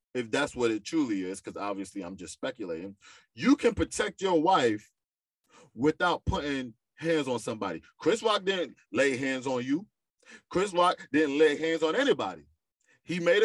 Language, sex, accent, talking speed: English, male, American, 165 wpm